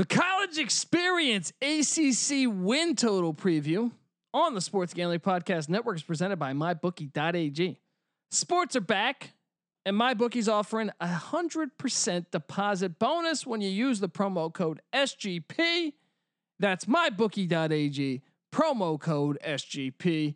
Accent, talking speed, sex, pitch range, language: American, 115 wpm, male, 170-240 Hz, English